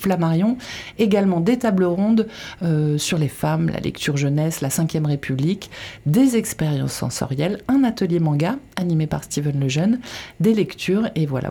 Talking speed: 150 wpm